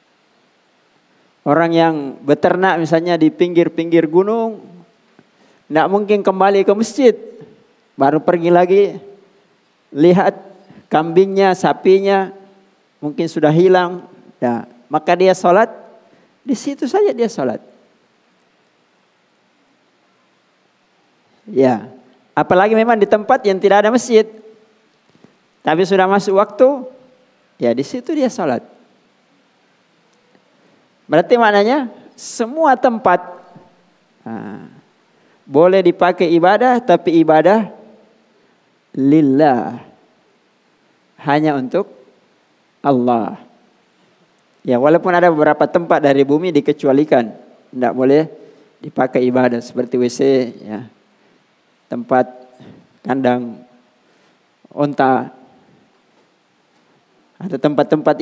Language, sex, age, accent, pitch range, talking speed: Indonesian, male, 50-69, native, 140-200 Hz, 85 wpm